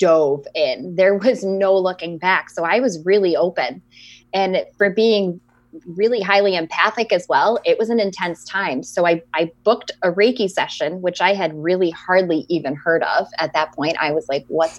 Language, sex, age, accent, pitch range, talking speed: English, female, 20-39, American, 160-210 Hz, 190 wpm